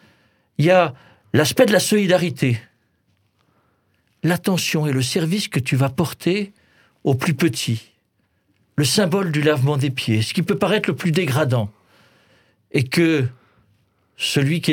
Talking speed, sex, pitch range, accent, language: 145 wpm, male, 125-190 Hz, French, French